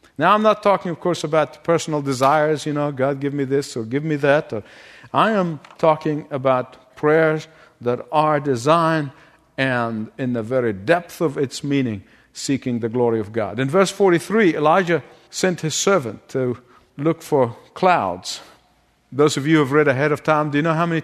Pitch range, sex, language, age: 130-165 Hz, male, English, 50-69